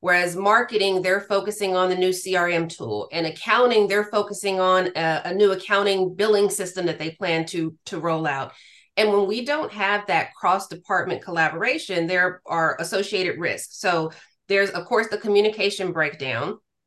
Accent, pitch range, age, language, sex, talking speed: American, 175-210 Hz, 30-49, English, female, 165 wpm